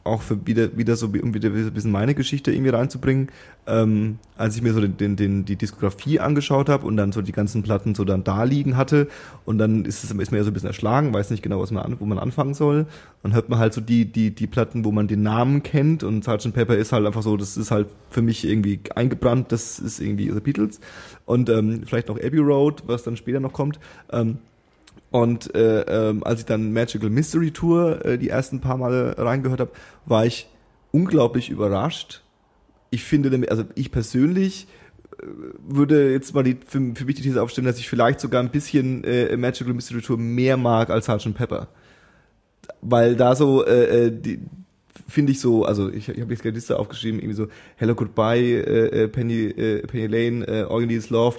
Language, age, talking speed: German, 30-49, 210 wpm